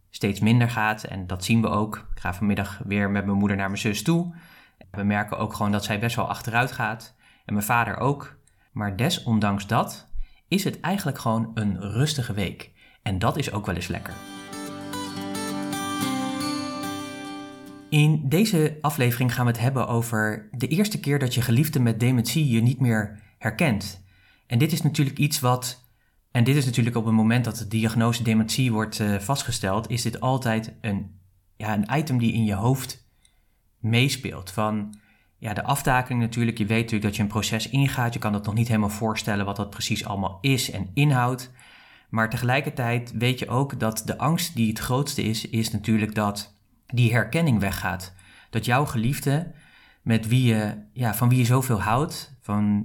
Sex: male